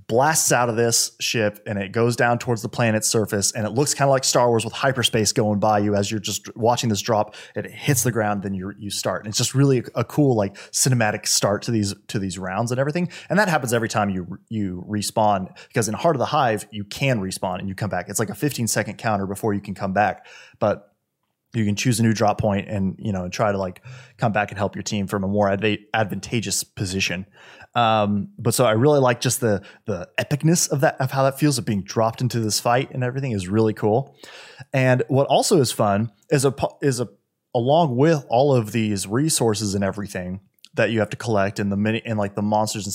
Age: 20-39